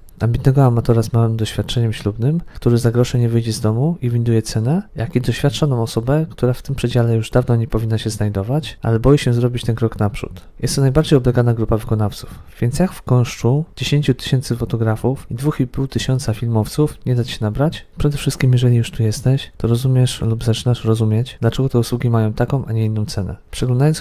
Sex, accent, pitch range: male, native, 115-130 Hz